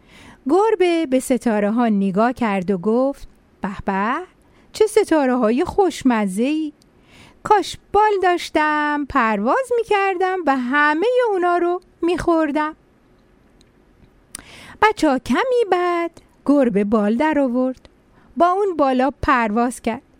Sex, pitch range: female, 235-360 Hz